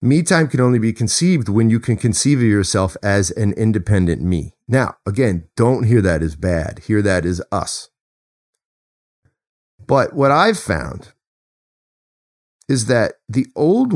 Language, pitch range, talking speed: English, 85-125 Hz, 150 wpm